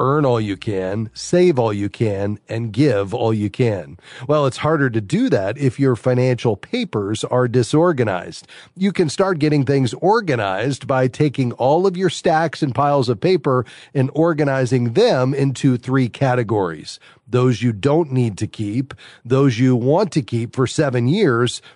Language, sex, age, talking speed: English, male, 40-59, 170 wpm